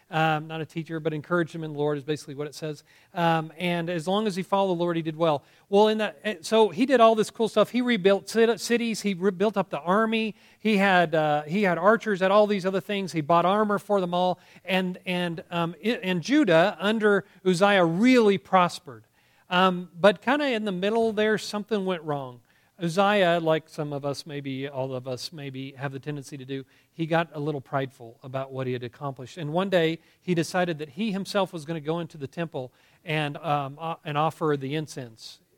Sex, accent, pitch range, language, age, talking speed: male, American, 155-200 Hz, English, 40-59, 220 wpm